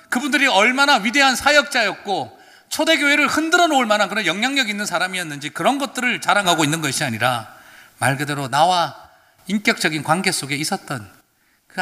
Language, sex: Korean, male